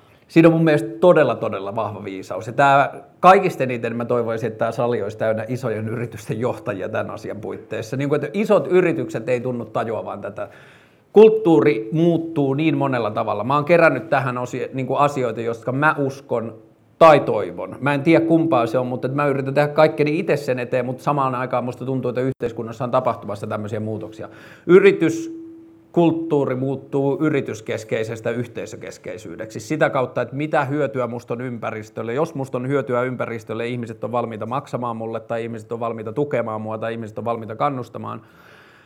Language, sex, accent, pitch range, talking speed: Finnish, male, native, 115-140 Hz, 165 wpm